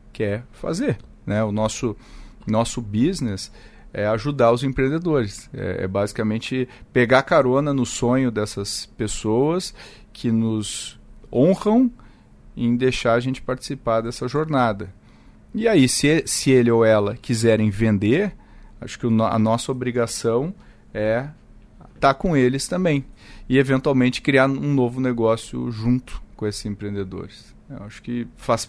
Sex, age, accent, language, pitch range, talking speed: male, 40-59, Brazilian, Portuguese, 110-135 Hz, 130 wpm